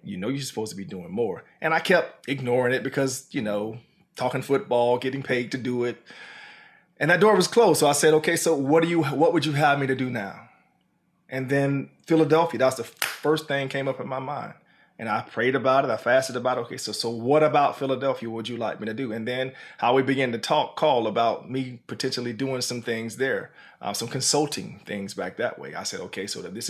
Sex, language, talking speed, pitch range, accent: male, English, 230 wpm, 120-150 Hz, American